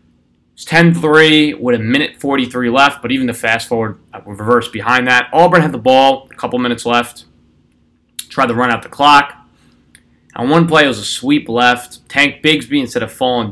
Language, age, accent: English, 20-39, American